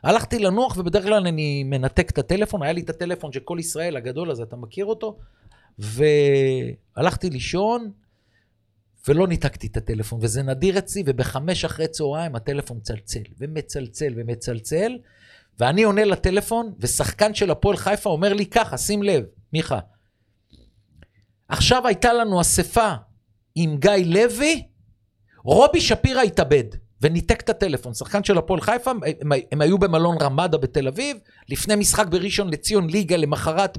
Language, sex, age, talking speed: Hebrew, male, 50-69, 140 wpm